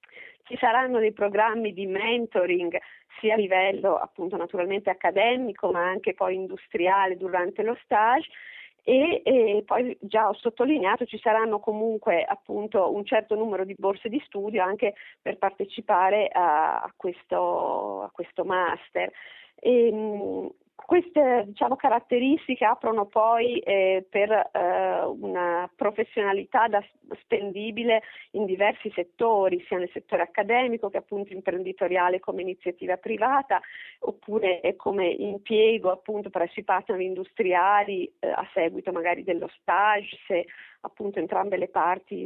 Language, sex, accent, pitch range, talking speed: Italian, female, native, 190-230 Hz, 125 wpm